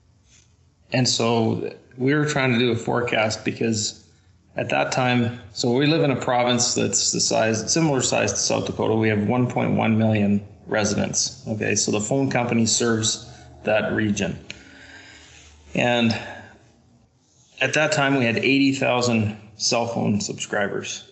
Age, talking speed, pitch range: 20-39, 140 wpm, 105-125 Hz